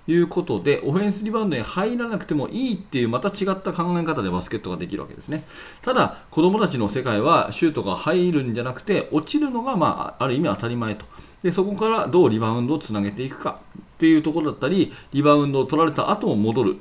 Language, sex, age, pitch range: Japanese, male, 40-59, 105-160 Hz